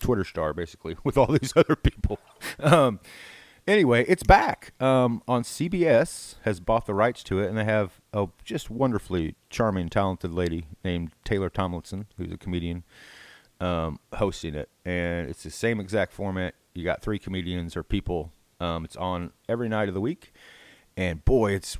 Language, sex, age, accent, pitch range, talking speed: English, male, 30-49, American, 90-115 Hz, 170 wpm